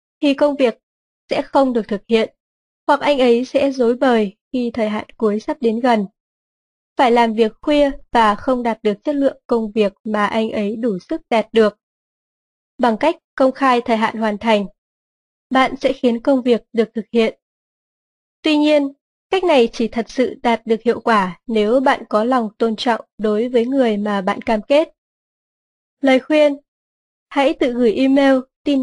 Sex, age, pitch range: female, 20-39, 225-275 Hz